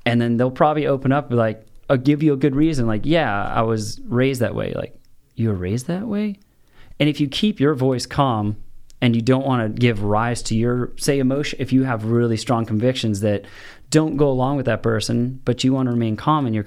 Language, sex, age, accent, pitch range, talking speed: English, male, 20-39, American, 110-135 Hz, 235 wpm